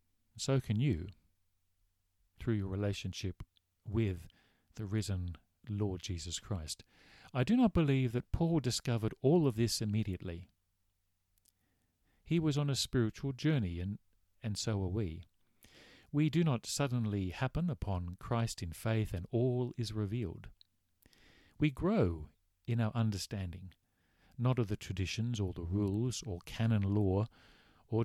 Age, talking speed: 50-69, 135 wpm